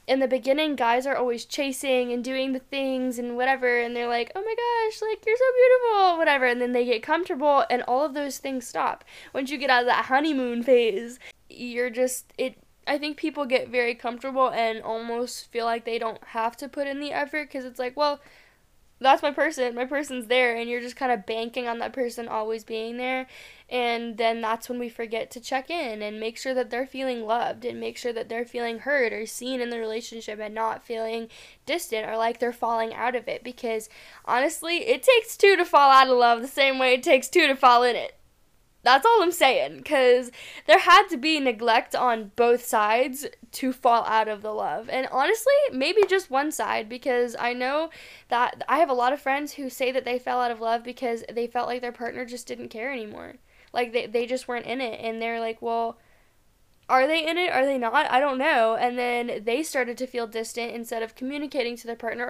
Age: 10-29